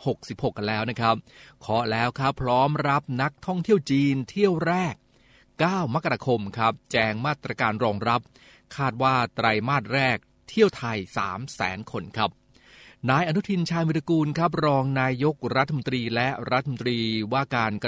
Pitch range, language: 115-145 Hz, Thai